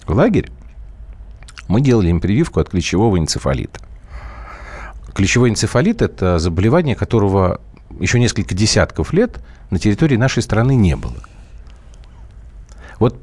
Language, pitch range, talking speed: Russian, 75-110 Hz, 110 wpm